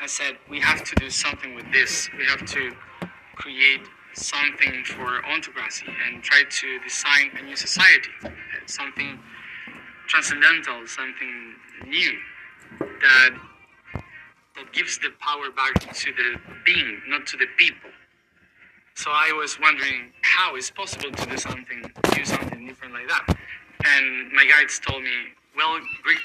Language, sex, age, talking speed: English, male, 20-39, 140 wpm